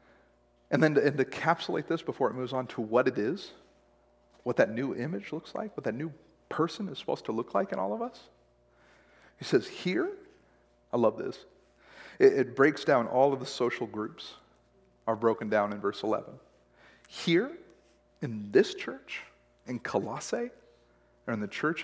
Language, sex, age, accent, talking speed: English, male, 40-59, American, 175 wpm